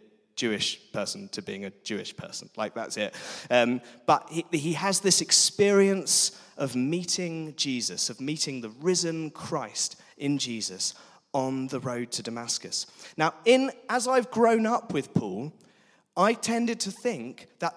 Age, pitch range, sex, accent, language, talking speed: 20-39, 140-195 Hz, male, British, English, 150 wpm